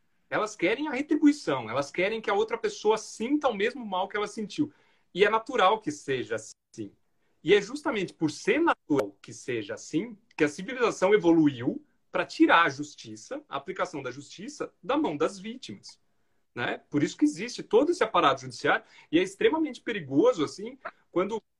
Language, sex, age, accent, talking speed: Portuguese, male, 40-59, Brazilian, 175 wpm